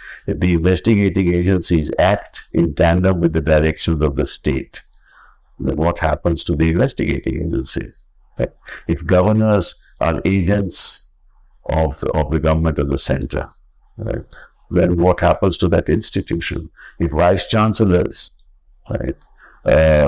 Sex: male